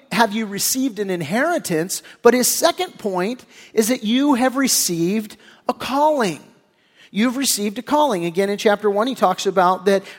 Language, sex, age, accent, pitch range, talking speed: English, male, 50-69, American, 205-270 Hz, 165 wpm